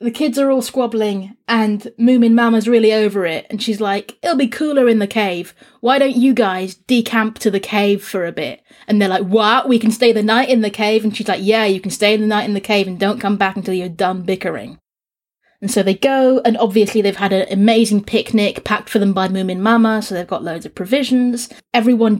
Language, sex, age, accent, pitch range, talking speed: English, female, 30-49, British, 195-230 Hz, 235 wpm